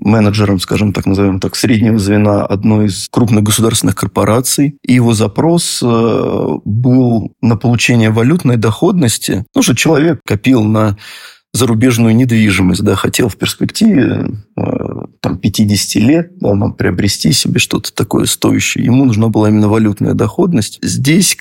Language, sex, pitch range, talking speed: Russian, male, 105-125 Hz, 125 wpm